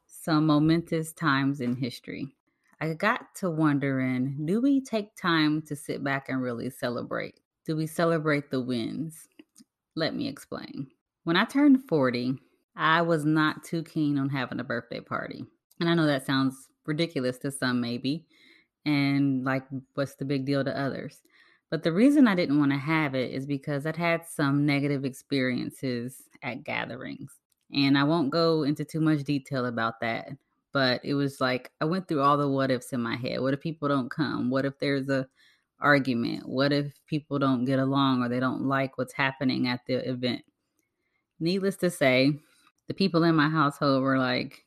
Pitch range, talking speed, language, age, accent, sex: 130-155 Hz, 180 wpm, English, 20-39, American, female